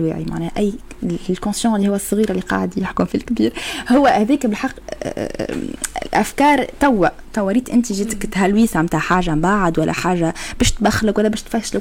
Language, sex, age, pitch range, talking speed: Arabic, female, 20-39, 200-245 Hz, 170 wpm